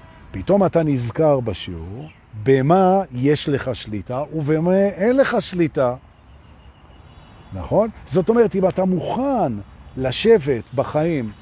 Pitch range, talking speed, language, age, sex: 110-170 Hz, 100 wpm, Hebrew, 50-69, male